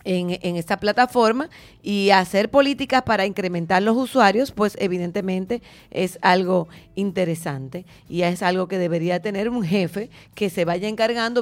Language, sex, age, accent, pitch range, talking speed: English, female, 30-49, American, 185-235 Hz, 145 wpm